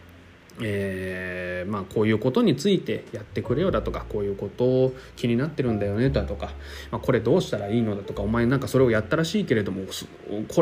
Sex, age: male, 20-39